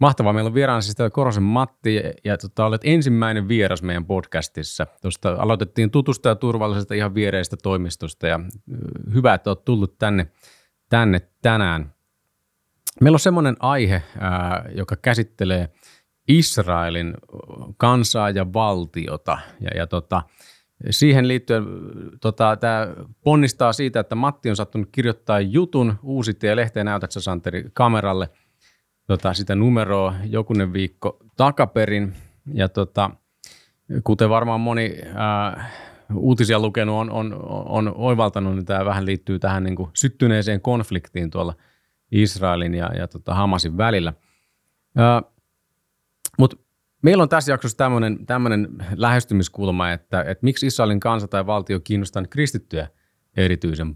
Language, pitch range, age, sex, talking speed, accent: Finnish, 95-120 Hz, 30-49, male, 125 wpm, native